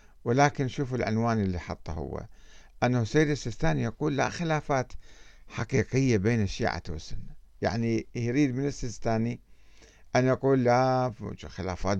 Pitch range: 100-125 Hz